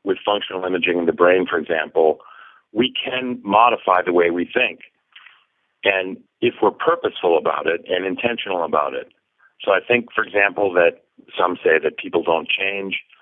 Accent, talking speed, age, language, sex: American, 170 wpm, 50-69, English, male